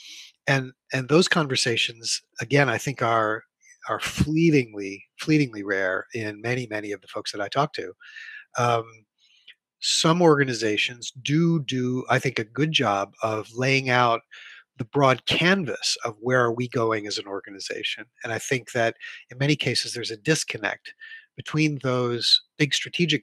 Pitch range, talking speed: 115-140 Hz, 155 wpm